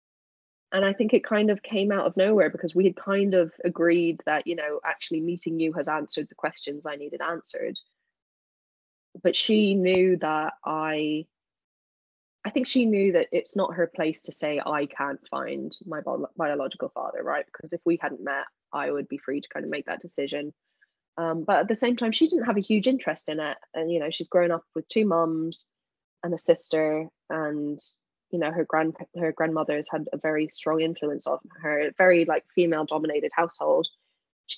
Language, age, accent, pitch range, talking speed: English, 10-29, British, 155-200 Hz, 200 wpm